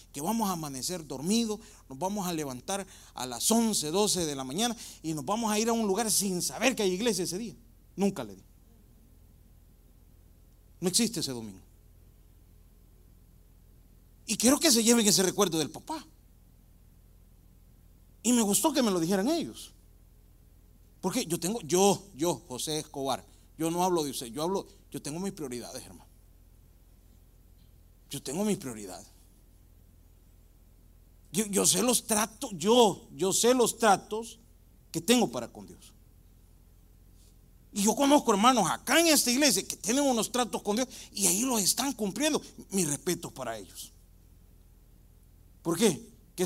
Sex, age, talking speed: male, 40-59, 155 wpm